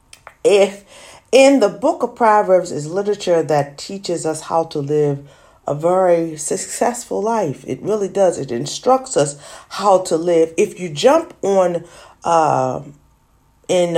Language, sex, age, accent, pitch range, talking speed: English, female, 40-59, American, 145-195 Hz, 140 wpm